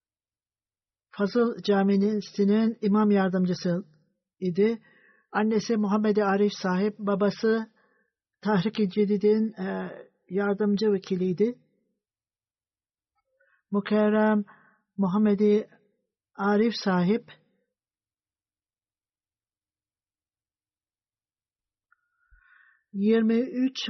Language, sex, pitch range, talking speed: Turkish, male, 195-220 Hz, 50 wpm